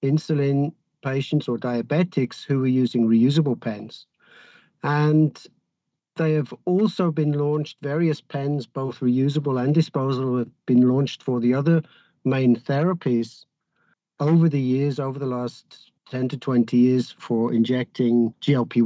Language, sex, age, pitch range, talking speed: English, male, 50-69, 120-155 Hz, 135 wpm